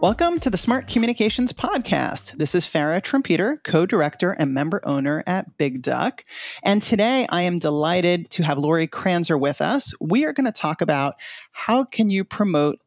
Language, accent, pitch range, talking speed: English, American, 155-210 Hz, 175 wpm